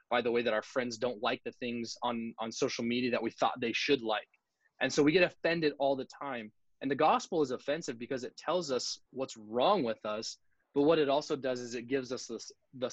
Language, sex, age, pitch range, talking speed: English, male, 20-39, 115-140 Hz, 235 wpm